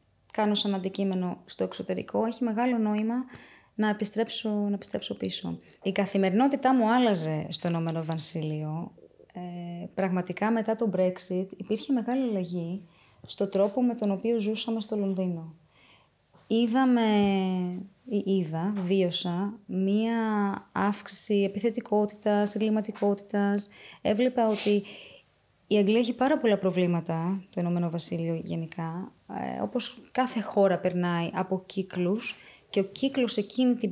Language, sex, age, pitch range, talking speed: Greek, female, 20-39, 180-220 Hz, 115 wpm